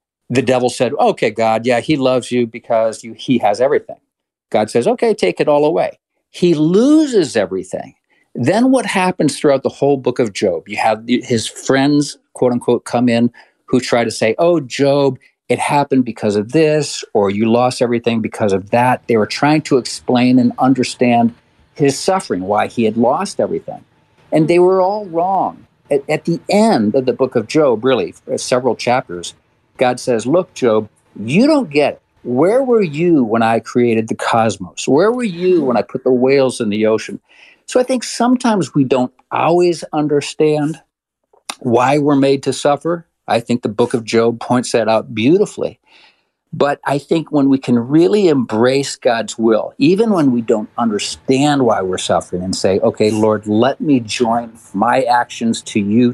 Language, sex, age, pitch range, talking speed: English, male, 50-69, 115-155 Hz, 180 wpm